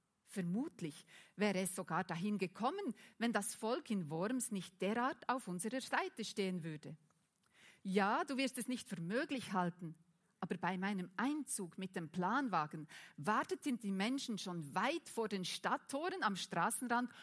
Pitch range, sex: 185-240 Hz, female